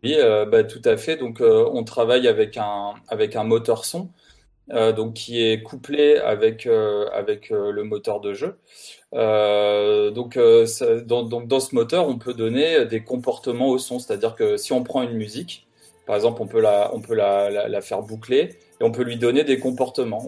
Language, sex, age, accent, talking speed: French, male, 20-39, French, 190 wpm